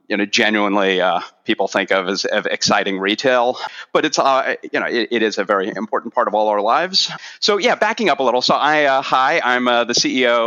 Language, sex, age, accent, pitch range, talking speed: English, male, 30-49, American, 95-120 Hz, 235 wpm